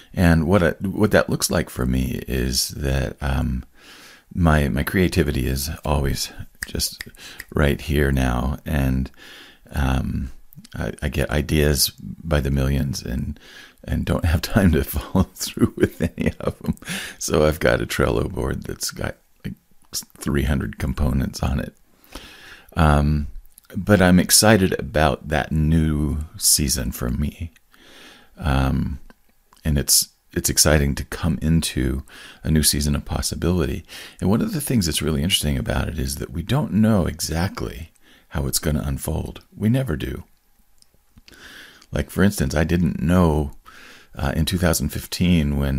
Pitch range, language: 70-85 Hz, English